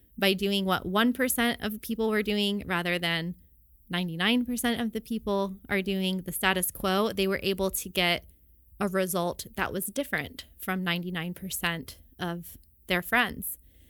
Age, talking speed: 20-39, 145 wpm